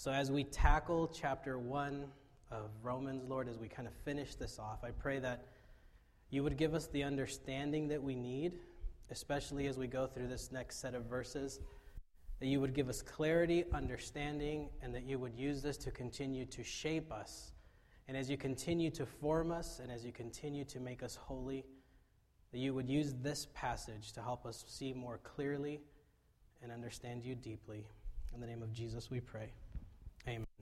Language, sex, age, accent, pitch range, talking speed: English, male, 20-39, American, 120-150 Hz, 185 wpm